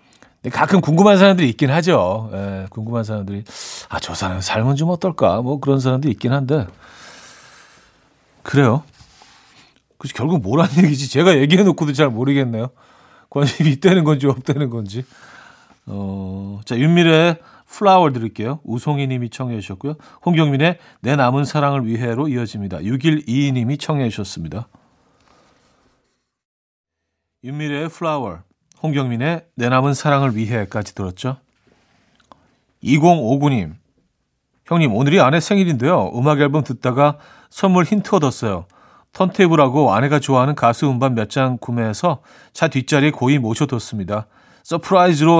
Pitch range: 120-160 Hz